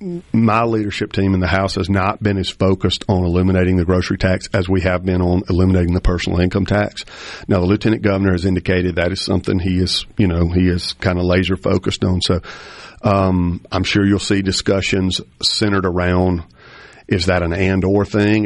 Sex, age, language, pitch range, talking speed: male, 50-69, English, 90-105 Hz, 200 wpm